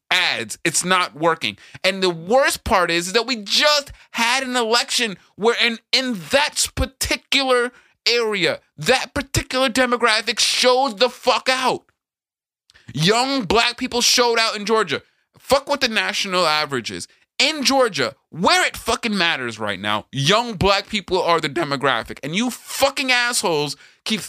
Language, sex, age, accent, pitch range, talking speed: English, male, 30-49, American, 170-250 Hz, 150 wpm